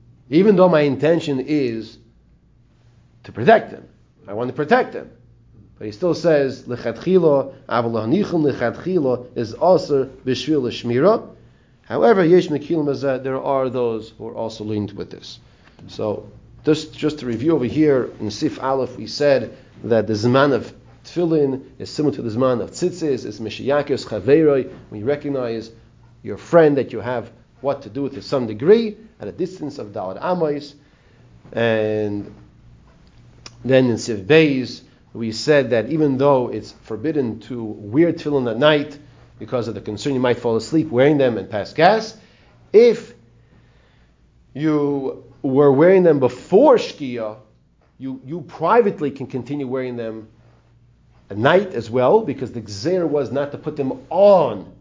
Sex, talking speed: male, 150 wpm